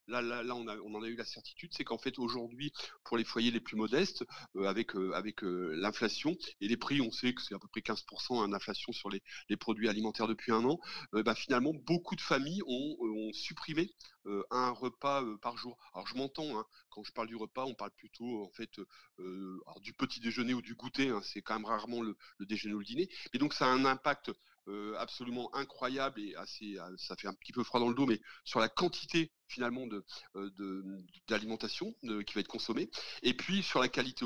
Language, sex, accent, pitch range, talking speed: French, male, French, 105-130 Hz, 230 wpm